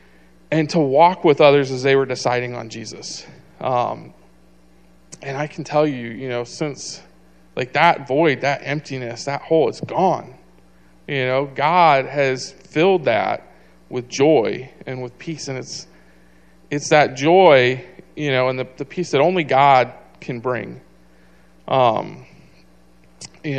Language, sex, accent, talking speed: English, male, American, 150 wpm